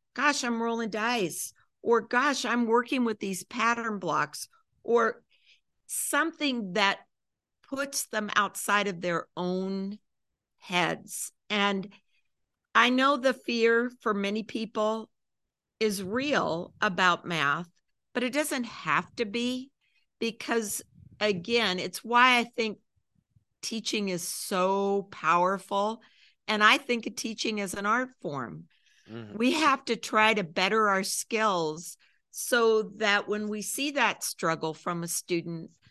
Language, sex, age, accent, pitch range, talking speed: English, female, 50-69, American, 185-235 Hz, 125 wpm